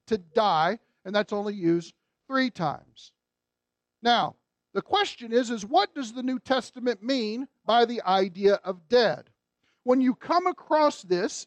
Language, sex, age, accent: English, male, 50-69, American